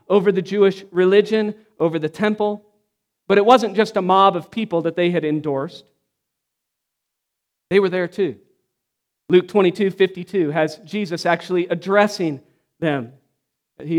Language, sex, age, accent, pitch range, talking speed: English, male, 40-59, American, 160-215 Hz, 140 wpm